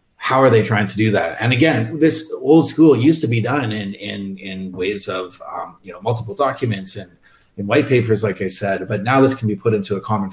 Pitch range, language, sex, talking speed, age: 100-120 Hz, English, male, 245 wpm, 30-49